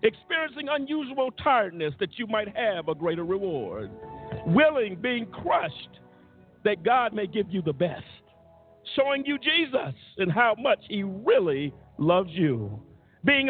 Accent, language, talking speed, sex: American, English, 140 wpm, male